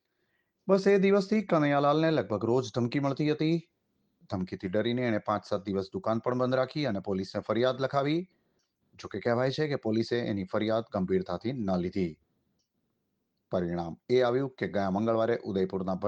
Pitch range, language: 105-160 Hz, Gujarati